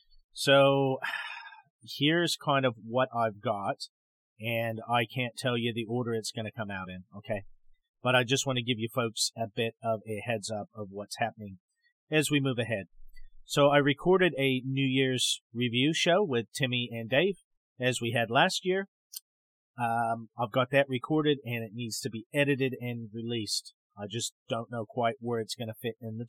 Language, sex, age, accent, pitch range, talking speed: English, male, 40-59, American, 110-135 Hz, 190 wpm